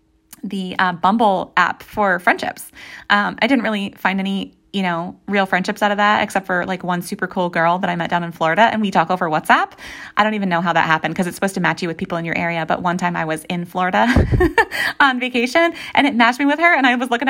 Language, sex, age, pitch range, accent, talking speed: English, female, 20-39, 175-235 Hz, American, 255 wpm